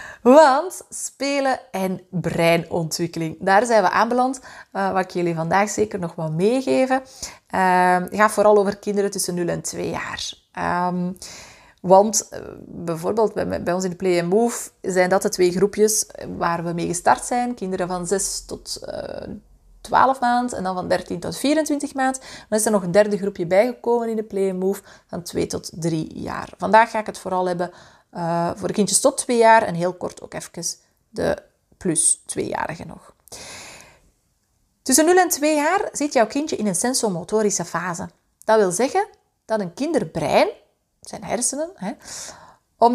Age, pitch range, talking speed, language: 30-49, 180-250 Hz, 175 wpm, Dutch